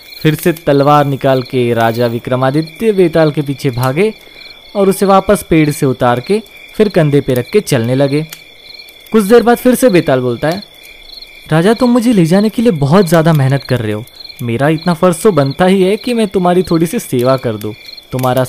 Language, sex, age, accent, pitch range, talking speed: Hindi, male, 20-39, native, 130-195 Hz, 210 wpm